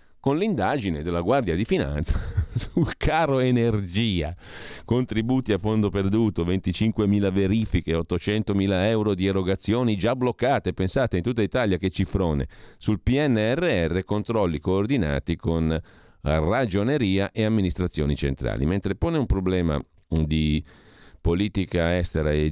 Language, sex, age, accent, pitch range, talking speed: Italian, male, 40-59, native, 80-105 Hz, 115 wpm